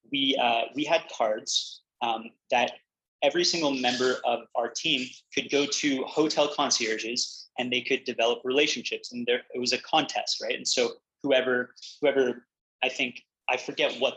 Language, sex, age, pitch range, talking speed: English, male, 20-39, 125-180 Hz, 165 wpm